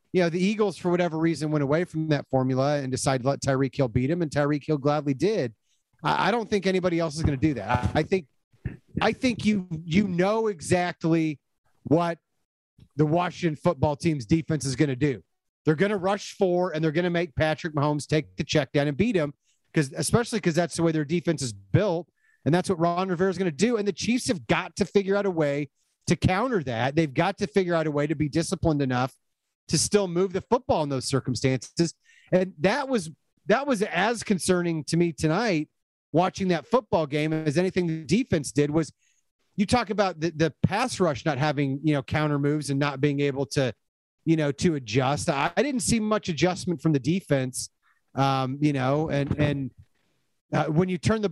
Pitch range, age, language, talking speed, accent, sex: 145-185 Hz, 40-59, English, 215 wpm, American, male